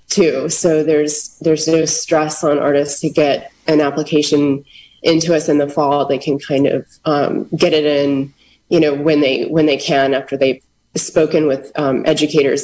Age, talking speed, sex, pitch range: 20-39, 180 wpm, female, 145-165 Hz